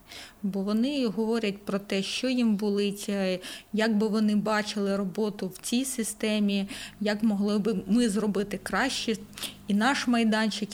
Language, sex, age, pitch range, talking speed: Ukrainian, female, 20-39, 200-230 Hz, 140 wpm